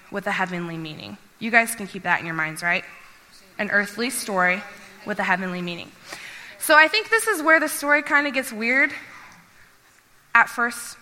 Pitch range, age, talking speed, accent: 205-275 Hz, 20-39, 185 wpm, American